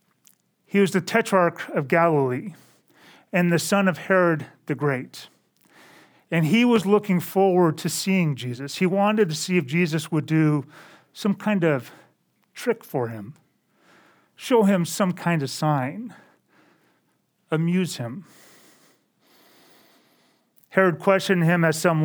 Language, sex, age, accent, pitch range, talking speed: English, male, 40-59, American, 150-190 Hz, 130 wpm